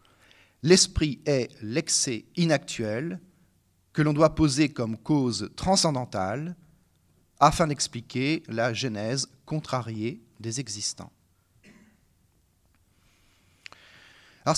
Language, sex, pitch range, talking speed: French, male, 115-165 Hz, 80 wpm